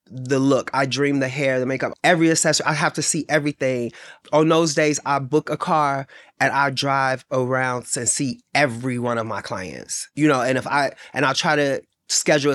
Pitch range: 140-180 Hz